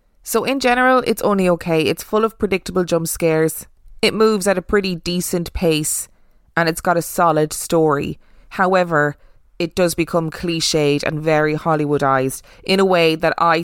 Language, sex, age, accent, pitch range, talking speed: English, female, 20-39, Irish, 160-195 Hz, 165 wpm